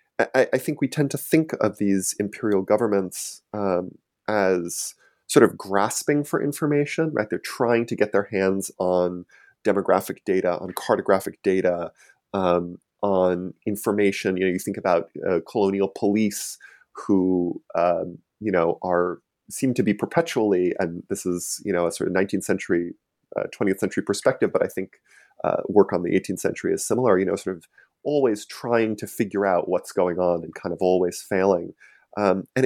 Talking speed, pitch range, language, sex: 175 wpm, 90-110 Hz, English, male